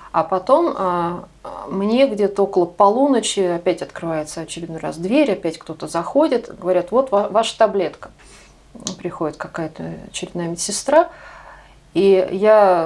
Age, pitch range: 30-49, 170-220 Hz